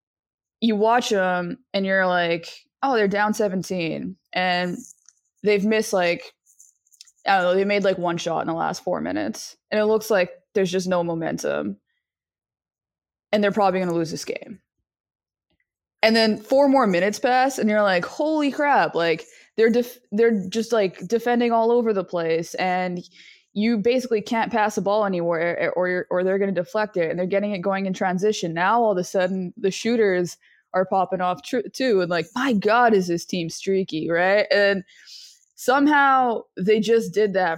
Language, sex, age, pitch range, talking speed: English, female, 20-39, 180-230 Hz, 180 wpm